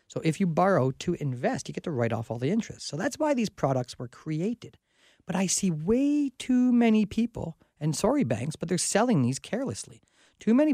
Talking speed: 210 wpm